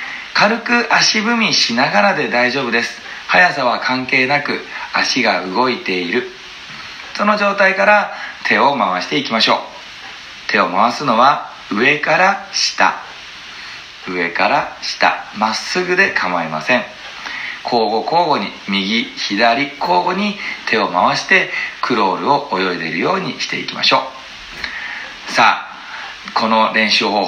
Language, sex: Japanese, male